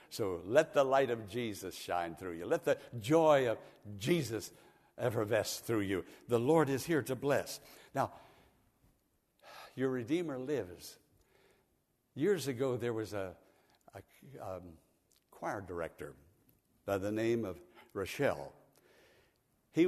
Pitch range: 110-150 Hz